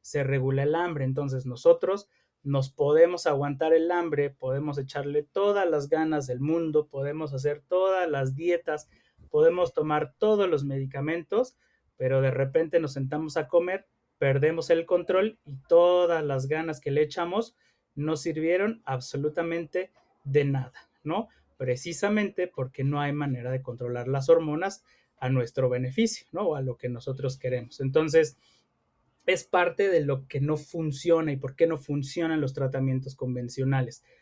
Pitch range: 135-170 Hz